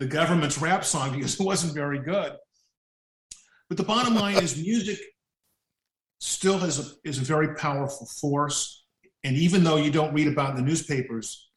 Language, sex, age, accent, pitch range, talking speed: English, male, 50-69, American, 135-185 Hz, 175 wpm